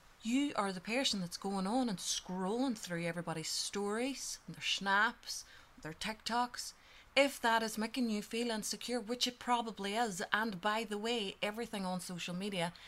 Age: 30-49